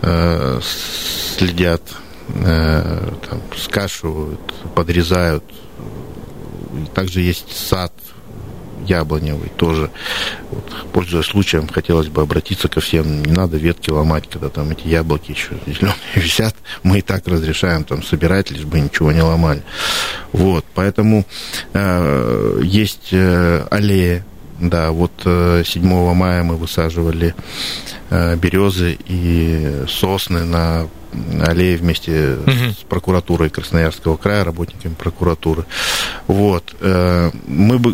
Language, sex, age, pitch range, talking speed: Russian, male, 50-69, 80-95 Hz, 105 wpm